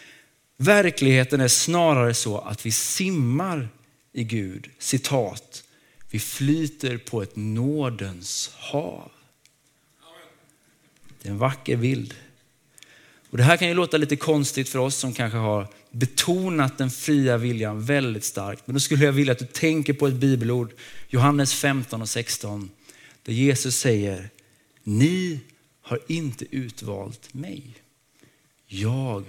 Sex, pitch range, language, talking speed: male, 120-150 Hz, Swedish, 130 wpm